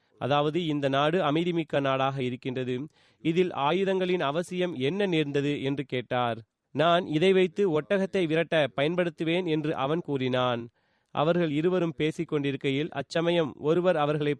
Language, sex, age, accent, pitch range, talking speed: Tamil, male, 30-49, native, 140-175 Hz, 120 wpm